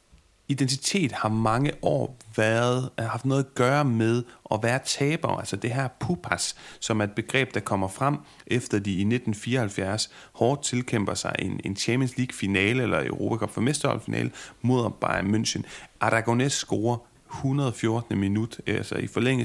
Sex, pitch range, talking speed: male, 100-120 Hz, 160 wpm